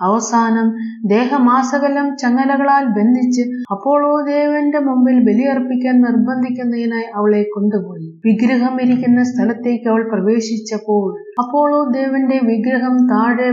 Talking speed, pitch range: 85 wpm, 210-250 Hz